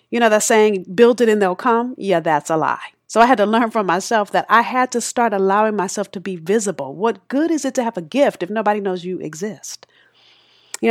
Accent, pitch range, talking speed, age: American, 180-235 Hz, 240 wpm, 40-59